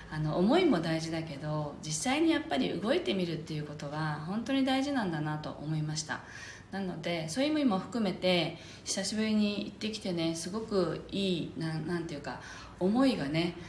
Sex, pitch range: female, 155-200 Hz